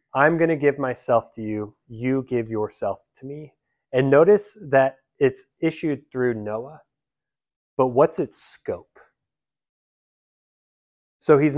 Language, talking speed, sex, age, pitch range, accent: English, 130 wpm, male, 20-39, 115-150 Hz, American